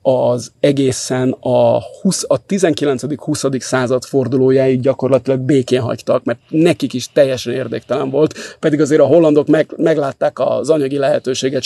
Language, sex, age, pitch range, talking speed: Hungarian, male, 30-49, 130-150 Hz, 125 wpm